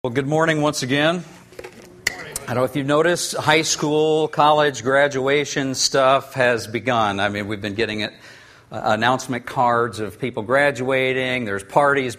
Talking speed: 155 wpm